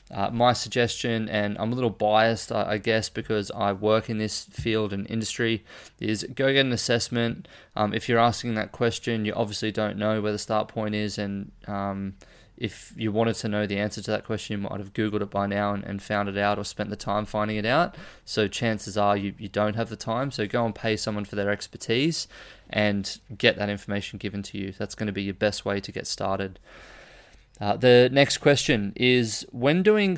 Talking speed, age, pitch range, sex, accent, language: 220 wpm, 20-39, 105-120 Hz, male, Australian, English